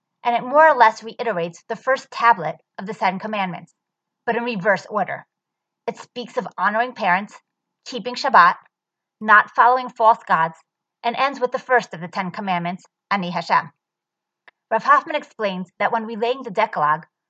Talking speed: 165 wpm